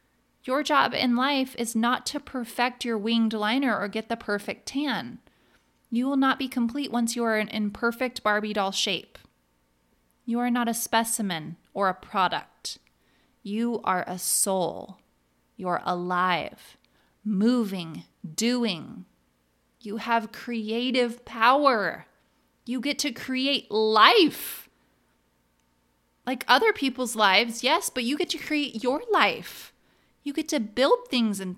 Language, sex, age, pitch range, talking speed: English, female, 20-39, 190-255 Hz, 135 wpm